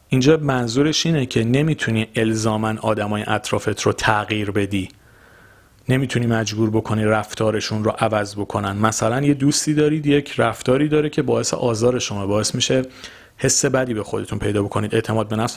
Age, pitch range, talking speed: 40-59, 110-145 Hz, 160 wpm